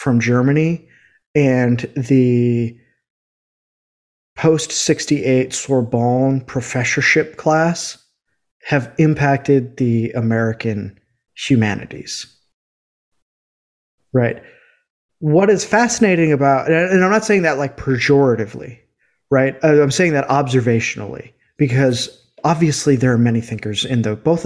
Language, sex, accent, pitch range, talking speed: English, male, American, 120-160 Hz, 100 wpm